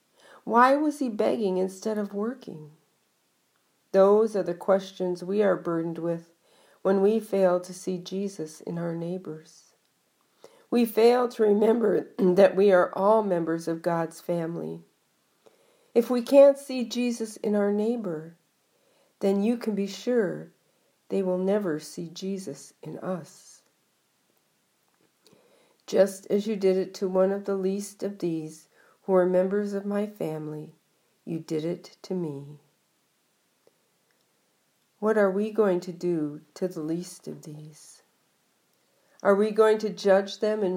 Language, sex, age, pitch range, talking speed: English, female, 50-69, 175-220 Hz, 140 wpm